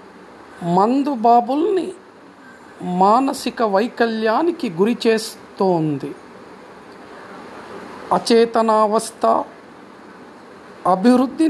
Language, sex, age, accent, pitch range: Telugu, male, 50-69, native, 210-270 Hz